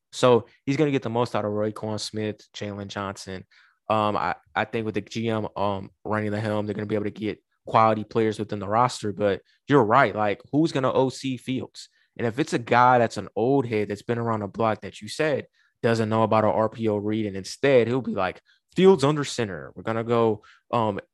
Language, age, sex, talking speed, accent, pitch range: English, 20-39, male, 235 wpm, American, 105-130 Hz